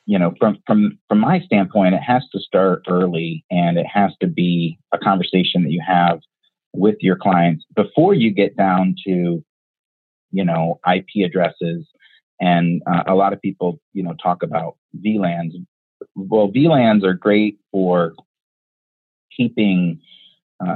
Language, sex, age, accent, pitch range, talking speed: English, male, 30-49, American, 85-110 Hz, 150 wpm